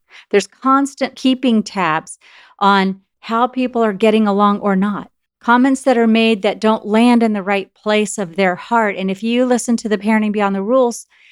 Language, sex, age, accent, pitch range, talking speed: English, female, 40-59, American, 200-240 Hz, 190 wpm